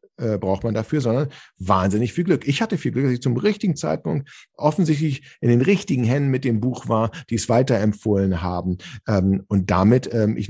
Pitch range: 105-165 Hz